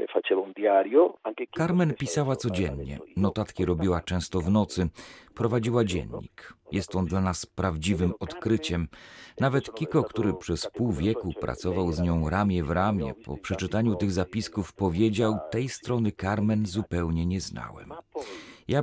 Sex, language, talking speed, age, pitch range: male, Polish, 130 wpm, 40-59, 90-115 Hz